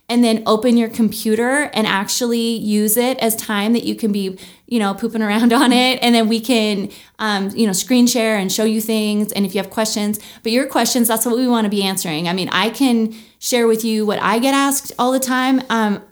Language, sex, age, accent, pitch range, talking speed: English, female, 20-39, American, 205-245 Hz, 240 wpm